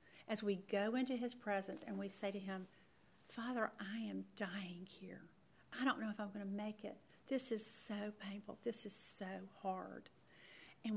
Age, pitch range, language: 50-69, 190-220 Hz, English